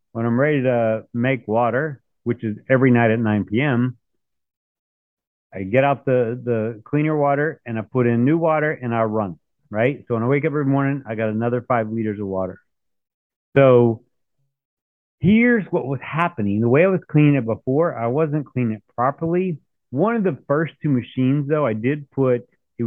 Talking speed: 190 wpm